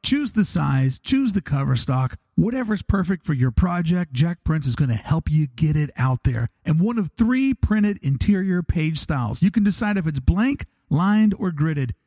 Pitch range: 145-200 Hz